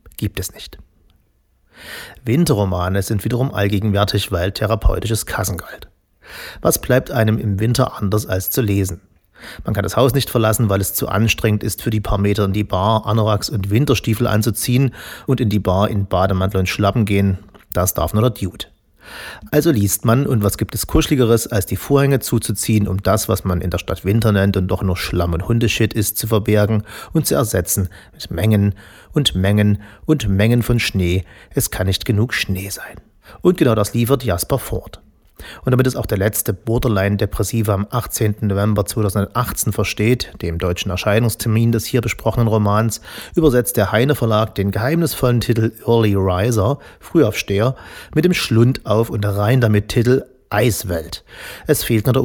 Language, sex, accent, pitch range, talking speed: German, male, German, 100-115 Hz, 170 wpm